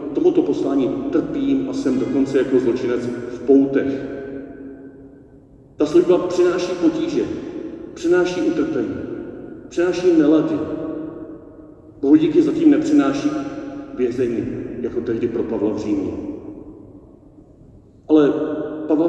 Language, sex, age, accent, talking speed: Czech, male, 50-69, native, 95 wpm